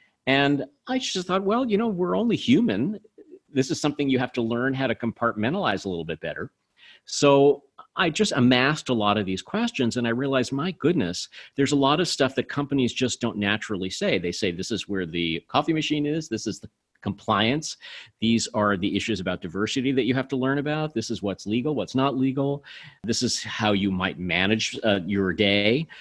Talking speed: 210 wpm